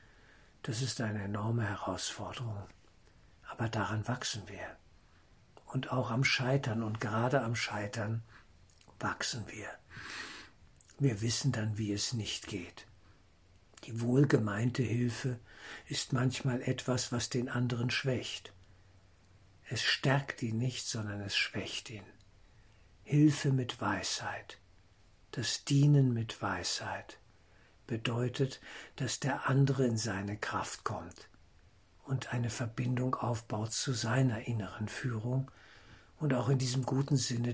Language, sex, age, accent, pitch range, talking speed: German, male, 60-79, German, 105-125 Hz, 115 wpm